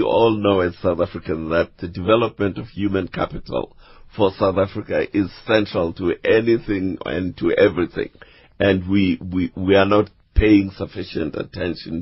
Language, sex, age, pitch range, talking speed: English, male, 50-69, 85-110 Hz, 145 wpm